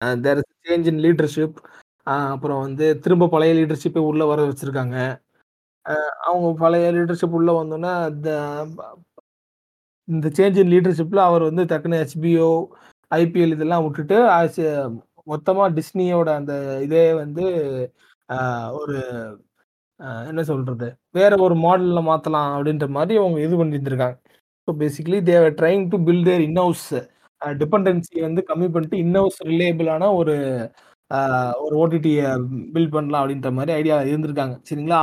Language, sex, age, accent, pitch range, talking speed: Tamil, male, 30-49, native, 145-175 Hz, 115 wpm